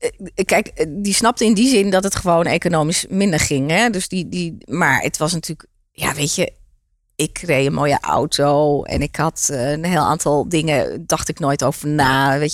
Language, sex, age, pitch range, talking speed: Dutch, female, 30-49, 150-210 Hz, 195 wpm